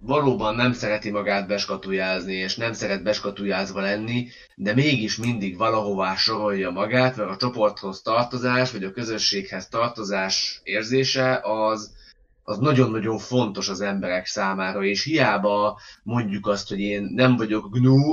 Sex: male